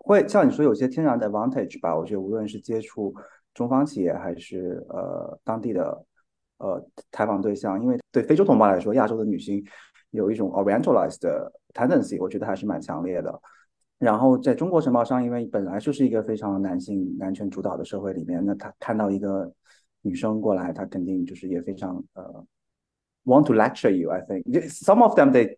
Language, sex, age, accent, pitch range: Chinese, male, 30-49, native, 95-120 Hz